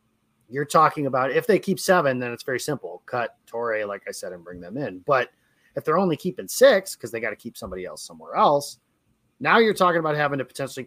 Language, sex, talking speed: English, male, 230 wpm